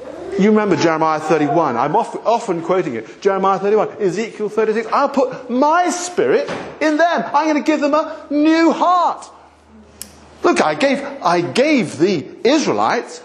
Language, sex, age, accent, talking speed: English, male, 50-69, British, 155 wpm